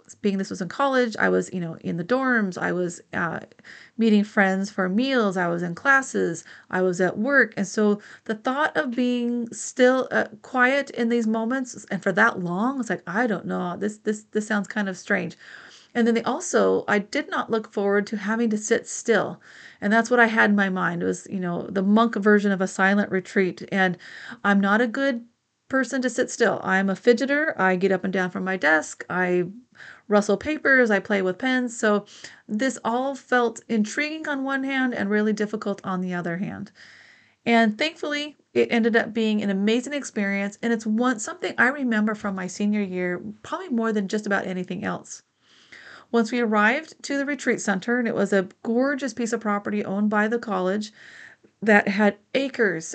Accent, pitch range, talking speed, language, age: American, 195-245 Hz, 200 wpm, English, 30-49